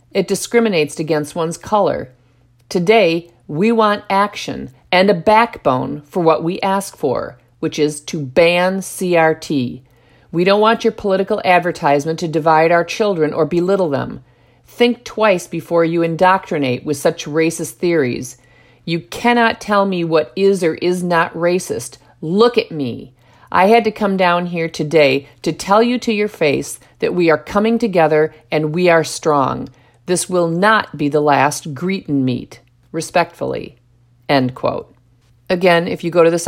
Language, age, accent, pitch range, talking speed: English, 50-69, American, 145-190 Hz, 160 wpm